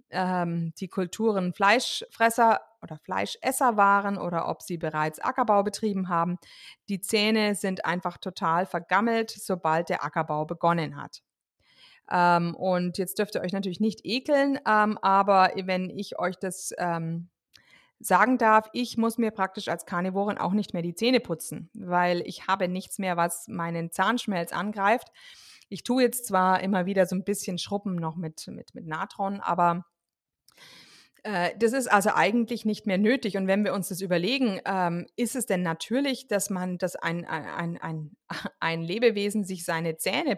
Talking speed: 155 wpm